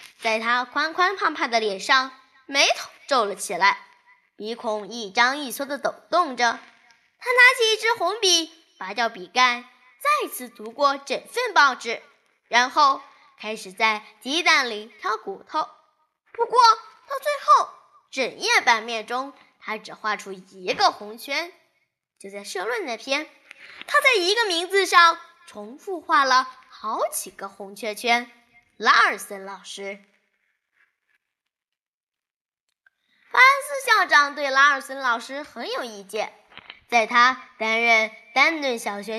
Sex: female